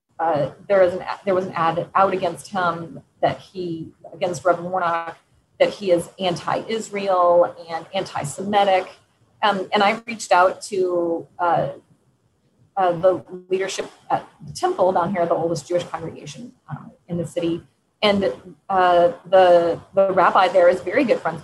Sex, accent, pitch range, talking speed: female, American, 175-205 Hz, 155 wpm